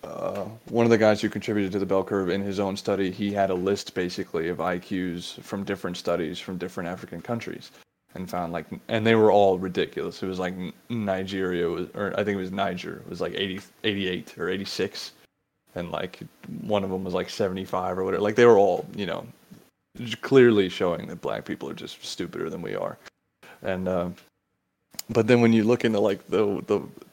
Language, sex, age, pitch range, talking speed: English, male, 20-39, 95-105 Hz, 210 wpm